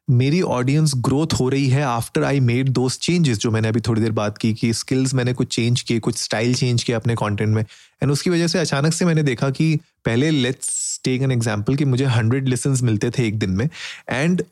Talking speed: 225 wpm